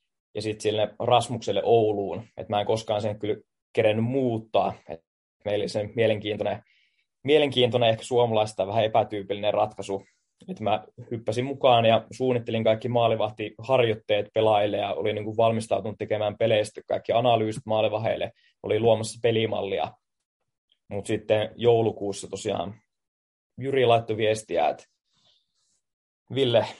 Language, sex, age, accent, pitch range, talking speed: Finnish, male, 20-39, native, 105-120 Hz, 115 wpm